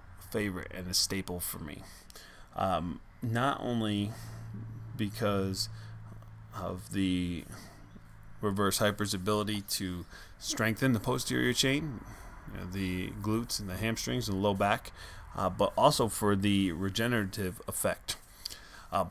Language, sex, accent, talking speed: English, male, American, 120 wpm